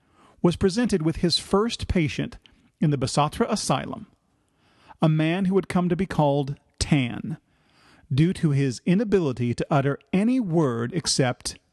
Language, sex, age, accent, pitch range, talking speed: English, male, 40-59, American, 140-190 Hz, 145 wpm